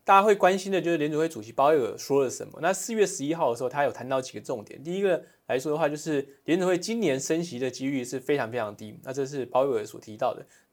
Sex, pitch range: male, 130-170 Hz